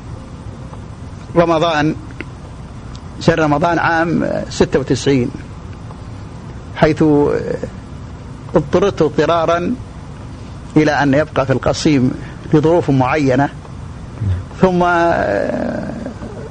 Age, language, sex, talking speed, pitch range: 50-69, Arabic, male, 60 wpm, 130-155 Hz